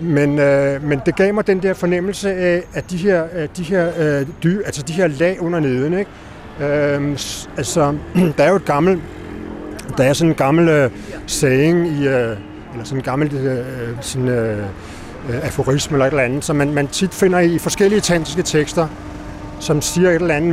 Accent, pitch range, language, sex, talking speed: native, 135-175 Hz, Danish, male, 190 wpm